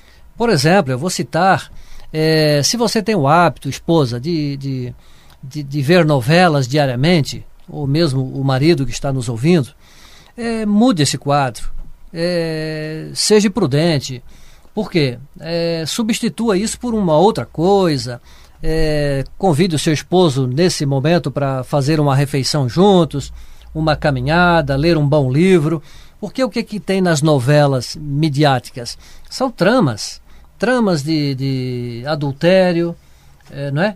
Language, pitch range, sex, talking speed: Portuguese, 140-180 Hz, male, 120 wpm